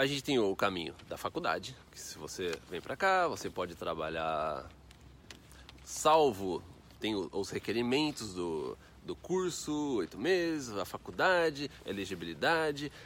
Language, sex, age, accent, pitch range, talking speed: Portuguese, male, 30-49, Brazilian, 110-150 Hz, 130 wpm